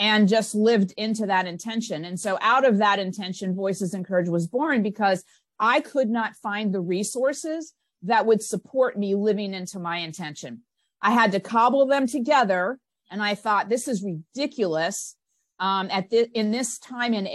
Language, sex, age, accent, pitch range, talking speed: English, female, 40-59, American, 195-240 Hz, 180 wpm